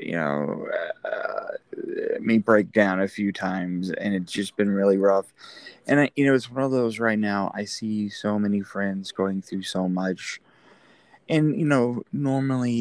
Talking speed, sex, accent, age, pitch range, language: 180 wpm, male, American, 20-39, 95-120 Hz, English